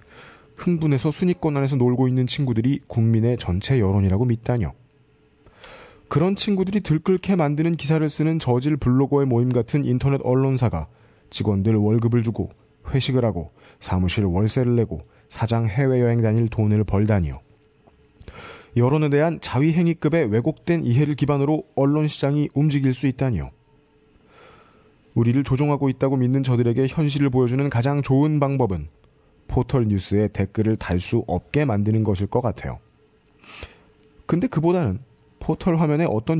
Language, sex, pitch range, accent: Korean, male, 115-150 Hz, native